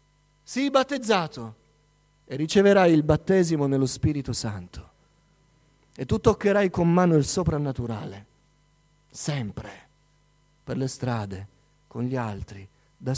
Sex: male